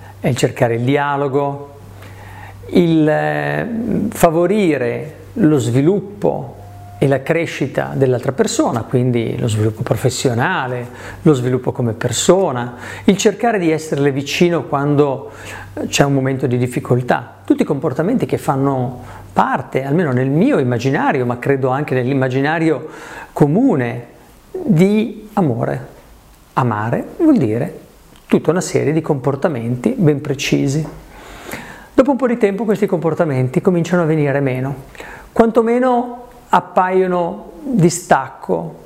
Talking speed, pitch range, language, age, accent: 115 wpm, 130-175 Hz, Italian, 50-69, native